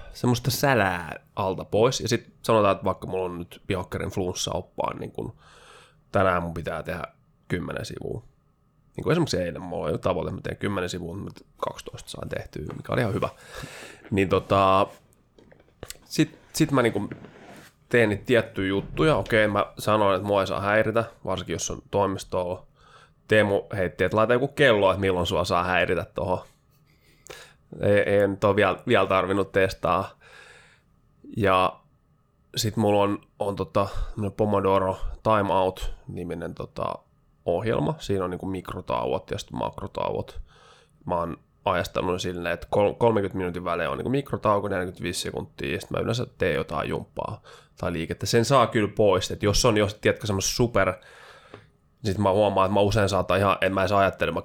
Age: 20-39